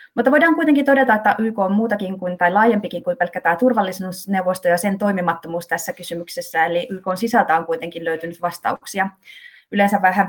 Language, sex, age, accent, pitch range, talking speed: Finnish, female, 20-39, native, 175-210 Hz, 170 wpm